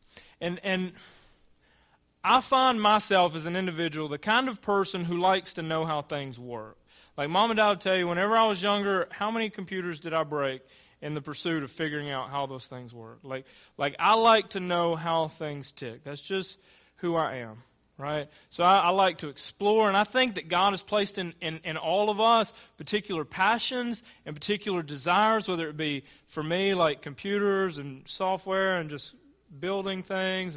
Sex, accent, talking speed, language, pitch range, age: male, American, 190 wpm, English, 160-215 Hz, 30-49